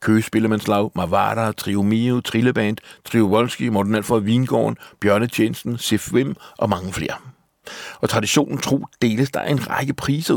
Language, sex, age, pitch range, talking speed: Danish, male, 60-79, 100-125 Hz, 125 wpm